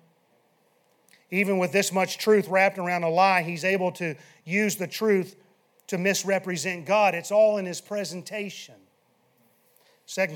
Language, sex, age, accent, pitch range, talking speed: English, male, 40-59, American, 165-205 Hz, 140 wpm